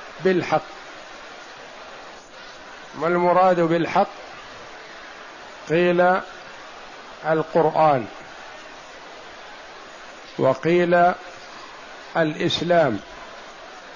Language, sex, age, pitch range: Arabic, male, 50-69, 150-180 Hz